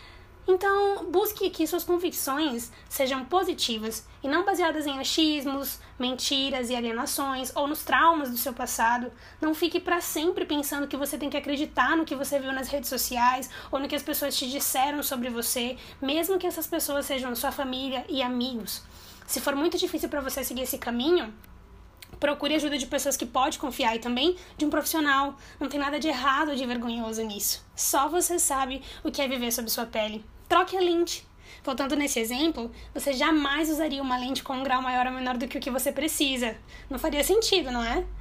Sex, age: female, 10-29